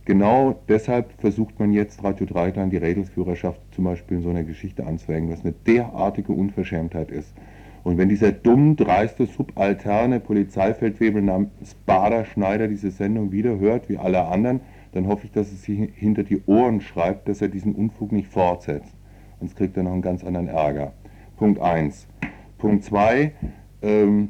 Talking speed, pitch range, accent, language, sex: 165 wpm, 95-110 Hz, German, German, male